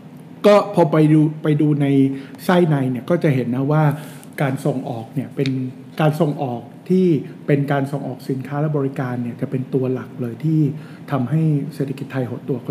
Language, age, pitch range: Thai, 60-79, 130-155 Hz